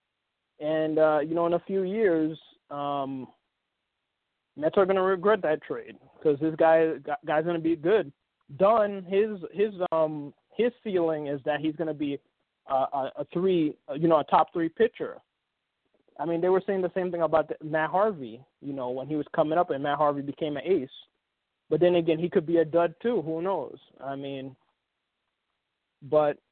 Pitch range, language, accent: 150-180 Hz, English, American